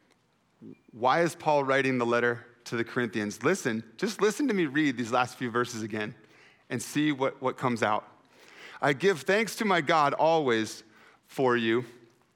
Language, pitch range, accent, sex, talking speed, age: English, 150-205 Hz, American, male, 170 wpm, 40-59